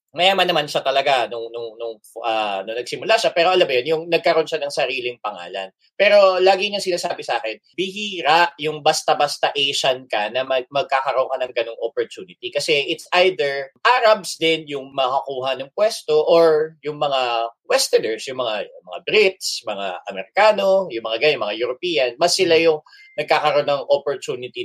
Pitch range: 135-185 Hz